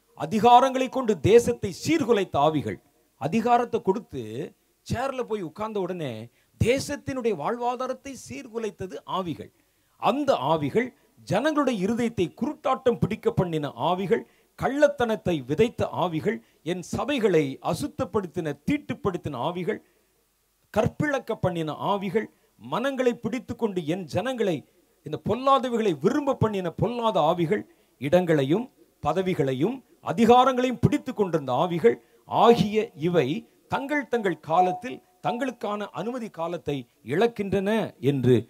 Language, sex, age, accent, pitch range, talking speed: Tamil, male, 40-59, native, 155-240 Hz, 90 wpm